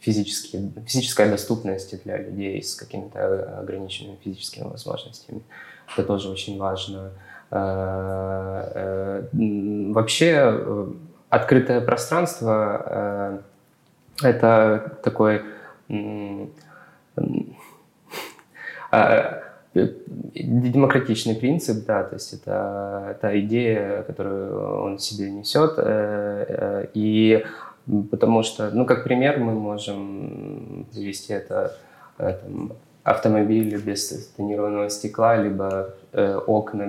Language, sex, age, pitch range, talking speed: Ukrainian, male, 20-39, 100-115 Hz, 80 wpm